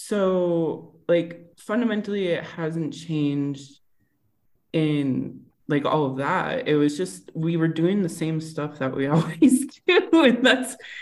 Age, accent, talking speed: 20-39, American, 140 wpm